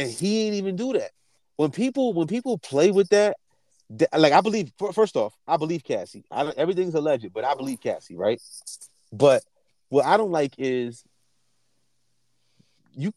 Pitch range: 135-175 Hz